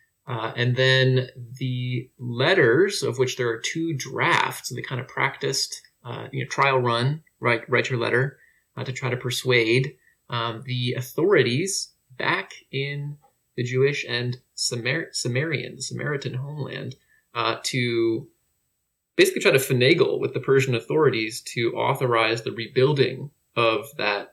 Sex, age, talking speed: male, 20-39, 145 wpm